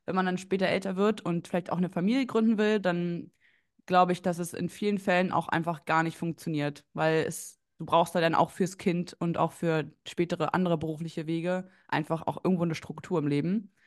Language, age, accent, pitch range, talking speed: German, 20-39, German, 160-180 Hz, 210 wpm